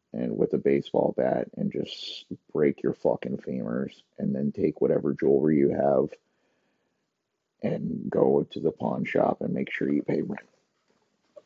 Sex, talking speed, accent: male, 155 wpm, American